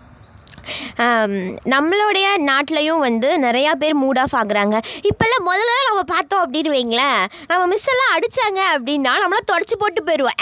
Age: 20-39